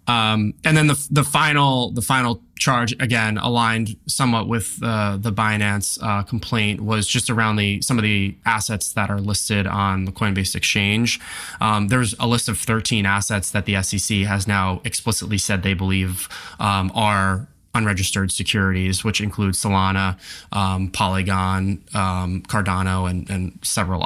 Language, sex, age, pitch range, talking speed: English, male, 20-39, 95-110 Hz, 155 wpm